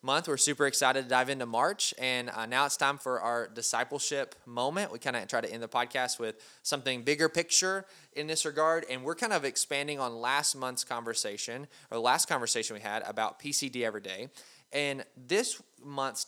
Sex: male